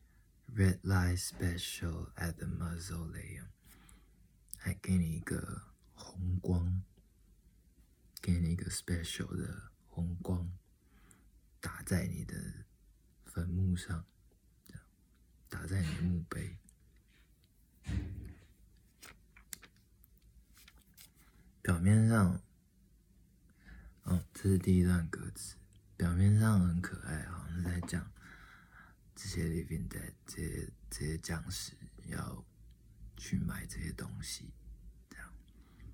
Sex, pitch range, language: male, 85-95 Hz, Chinese